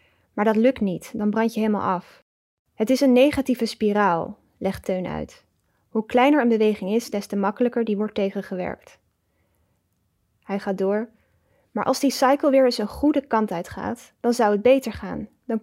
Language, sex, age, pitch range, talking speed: English, female, 10-29, 200-245 Hz, 180 wpm